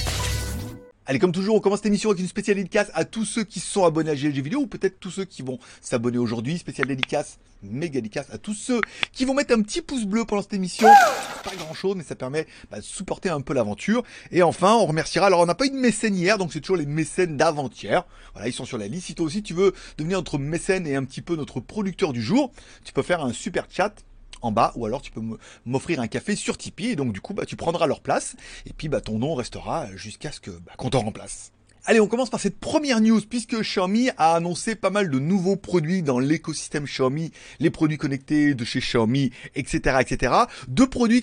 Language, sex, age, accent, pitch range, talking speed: French, male, 30-49, French, 130-200 Hz, 240 wpm